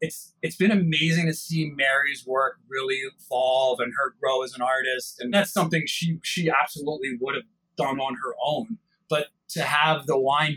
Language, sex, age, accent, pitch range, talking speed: English, male, 30-49, American, 135-170 Hz, 185 wpm